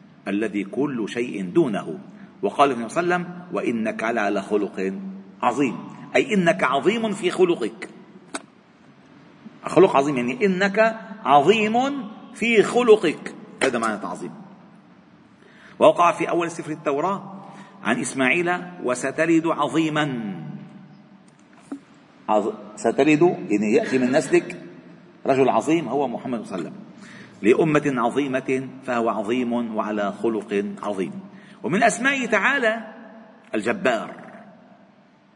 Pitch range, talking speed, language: 145-215 Hz, 105 wpm, Arabic